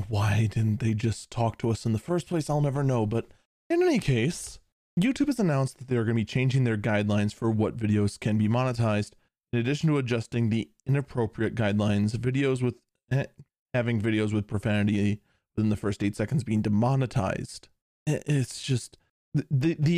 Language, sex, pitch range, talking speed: English, male, 110-145 Hz, 185 wpm